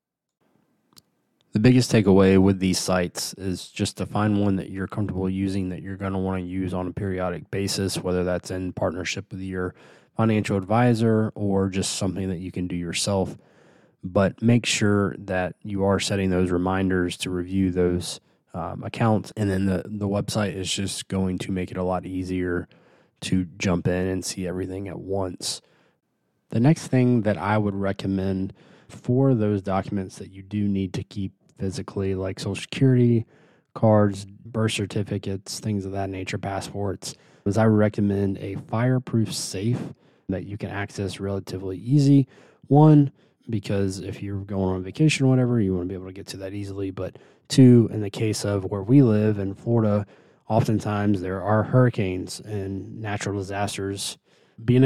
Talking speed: 170 wpm